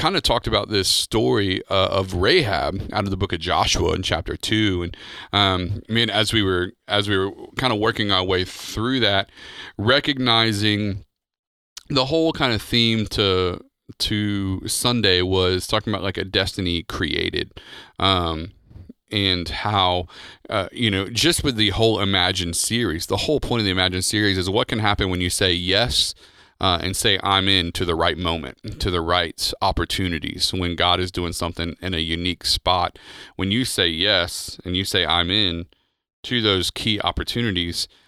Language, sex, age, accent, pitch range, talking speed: English, male, 30-49, American, 90-110 Hz, 180 wpm